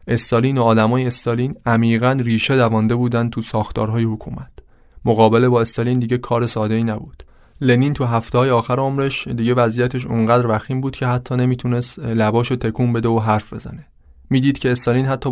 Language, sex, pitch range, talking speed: Persian, male, 110-125 Hz, 170 wpm